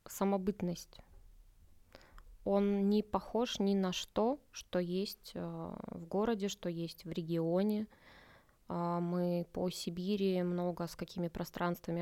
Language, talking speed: Russian, 110 wpm